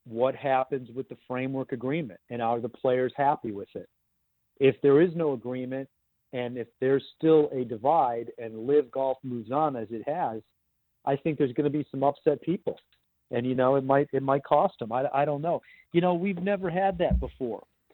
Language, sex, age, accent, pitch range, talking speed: English, male, 40-59, American, 120-150 Hz, 205 wpm